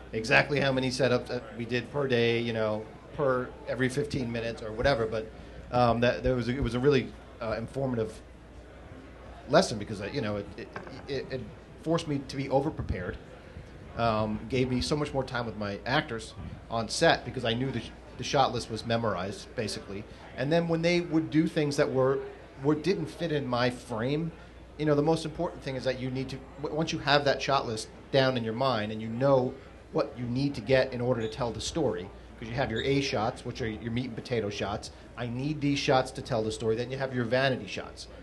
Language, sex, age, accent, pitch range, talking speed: English, male, 40-59, American, 110-135 Hz, 225 wpm